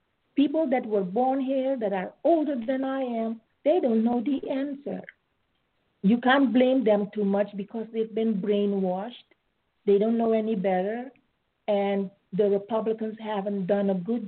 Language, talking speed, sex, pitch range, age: English, 160 wpm, female, 205-255 Hz, 50-69